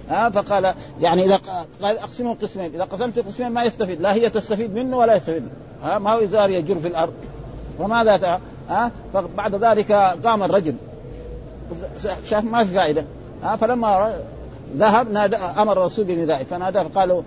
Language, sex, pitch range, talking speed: Arabic, male, 160-210 Hz, 170 wpm